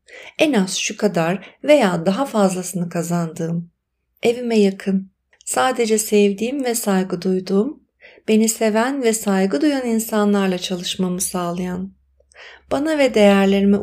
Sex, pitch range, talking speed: female, 180-230 Hz, 115 wpm